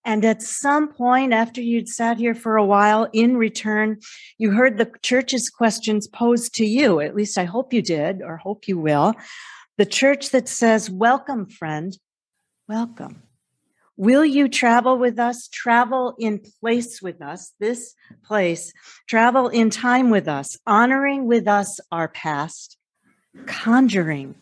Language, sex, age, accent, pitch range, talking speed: English, female, 50-69, American, 165-230 Hz, 150 wpm